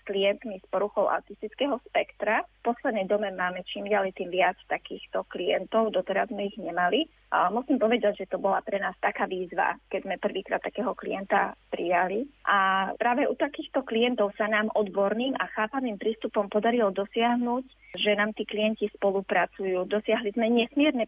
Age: 20-39